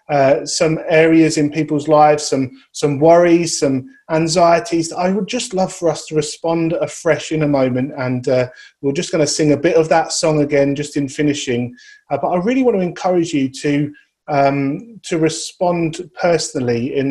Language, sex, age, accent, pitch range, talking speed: English, male, 30-49, British, 140-165 Hz, 185 wpm